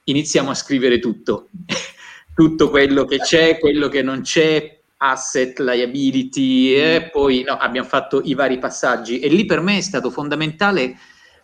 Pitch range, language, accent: 125-160 Hz, Italian, native